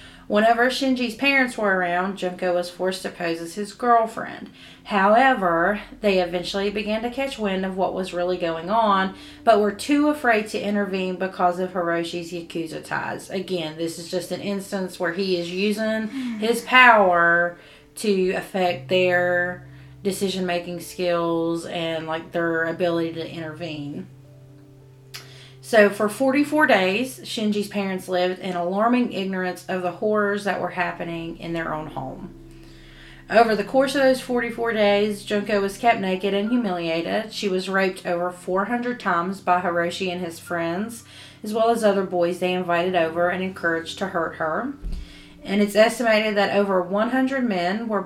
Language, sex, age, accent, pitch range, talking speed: English, female, 30-49, American, 175-210 Hz, 155 wpm